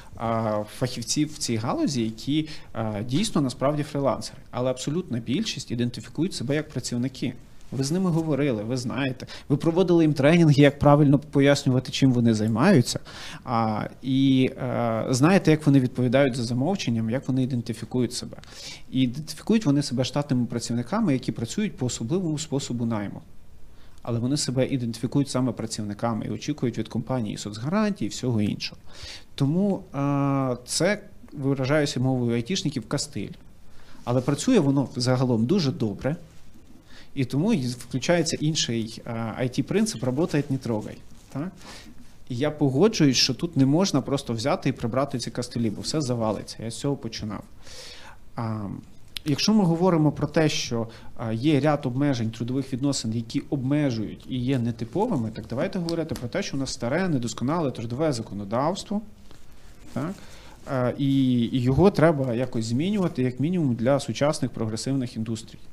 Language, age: Ukrainian, 30-49